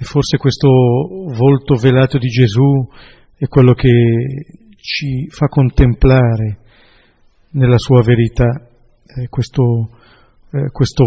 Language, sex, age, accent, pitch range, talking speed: Italian, male, 40-59, native, 120-140 Hz, 110 wpm